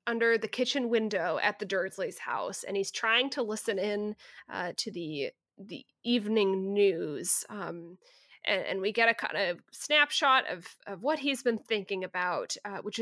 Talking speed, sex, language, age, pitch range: 175 wpm, female, English, 20-39, 190-235 Hz